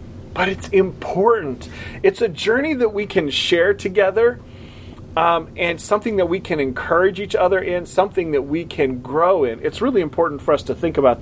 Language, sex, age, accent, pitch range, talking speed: English, male, 30-49, American, 140-205 Hz, 185 wpm